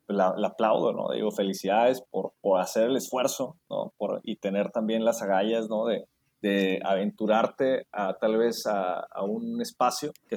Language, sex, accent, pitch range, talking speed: Spanish, male, Mexican, 110-140 Hz, 175 wpm